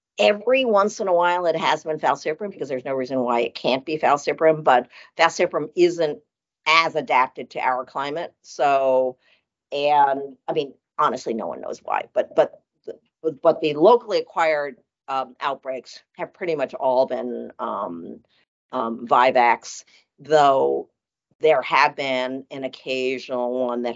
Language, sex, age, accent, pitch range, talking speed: English, female, 50-69, American, 125-165 Hz, 150 wpm